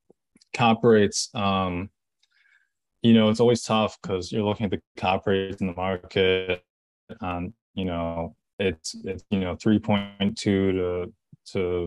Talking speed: 140 wpm